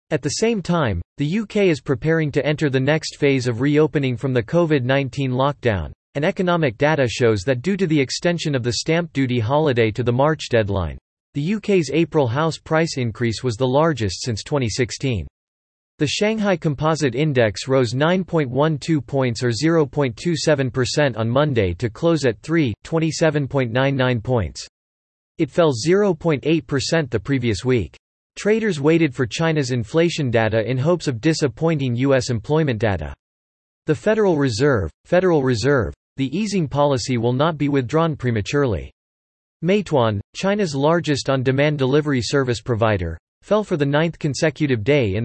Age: 40-59